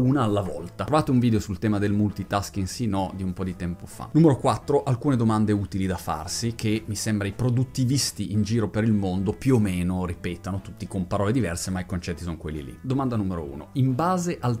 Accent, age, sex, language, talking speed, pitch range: native, 30-49, male, Italian, 225 wpm, 100-130 Hz